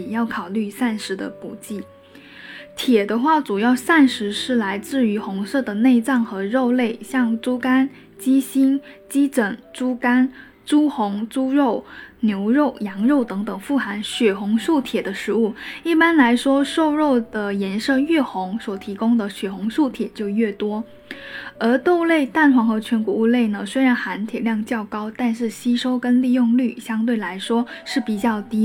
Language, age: Chinese, 10-29